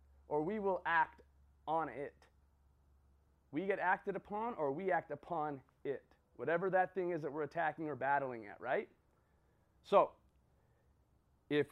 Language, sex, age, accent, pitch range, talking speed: English, male, 30-49, American, 130-190 Hz, 145 wpm